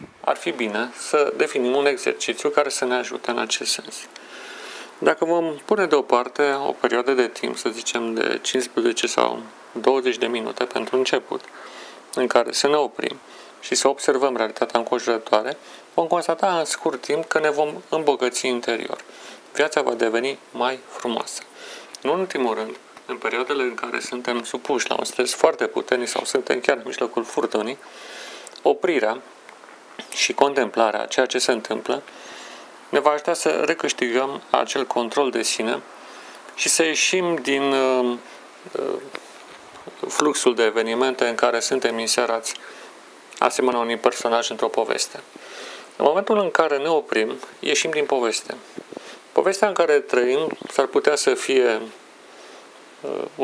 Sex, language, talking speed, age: male, Romanian, 145 wpm, 40-59